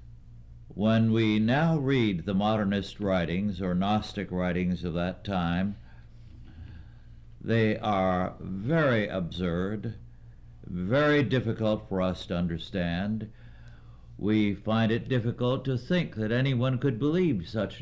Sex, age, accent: male, 60-79, American